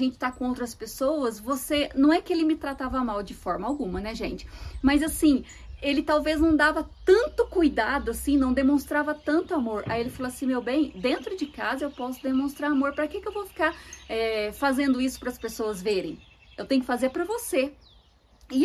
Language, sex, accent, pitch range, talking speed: Portuguese, female, Brazilian, 230-295 Hz, 205 wpm